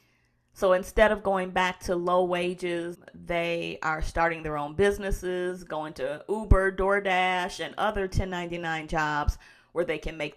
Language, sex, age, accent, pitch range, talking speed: English, female, 40-59, American, 155-185 Hz, 150 wpm